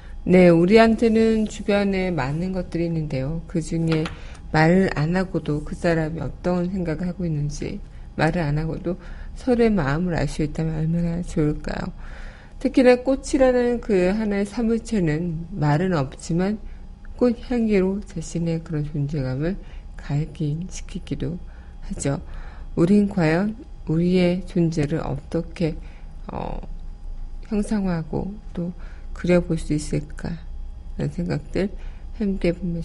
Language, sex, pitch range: Korean, female, 150-190 Hz